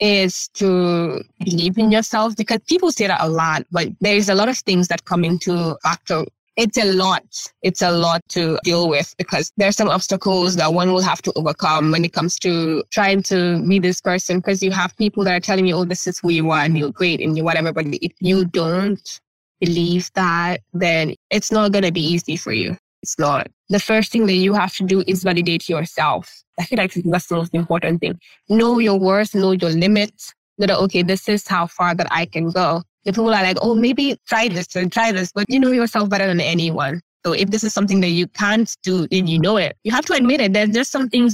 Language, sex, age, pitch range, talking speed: English, female, 20-39, 170-205 Hz, 235 wpm